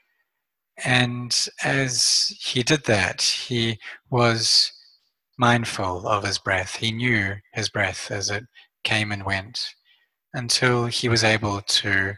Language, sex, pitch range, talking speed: English, male, 100-125 Hz, 125 wpm